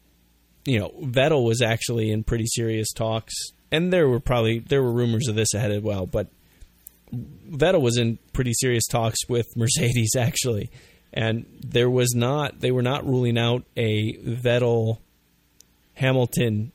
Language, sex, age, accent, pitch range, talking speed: English, male, 20-39, American, 110-125 Hz, 155 wpm